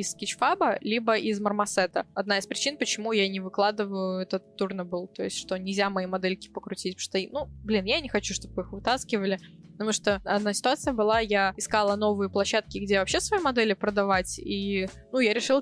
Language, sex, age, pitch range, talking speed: Russian, female, 20-39, 205-270 Hz, 190 wpm